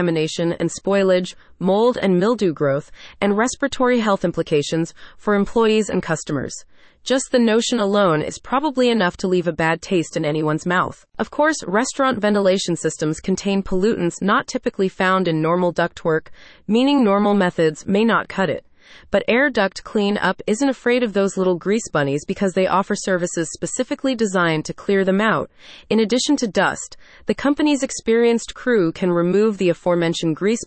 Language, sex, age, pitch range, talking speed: English, female, 30-49, 175-230 Hz, 165 wpm